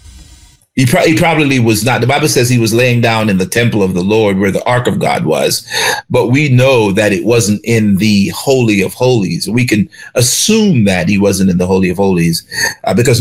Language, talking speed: English, 225 wpm